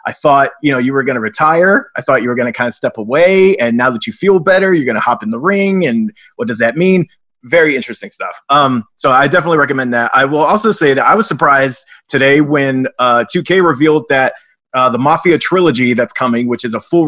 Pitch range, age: 120-160 Hz, 30-49